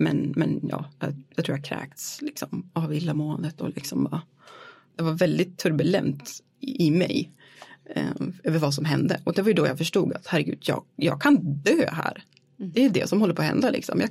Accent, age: Swedish, 30-49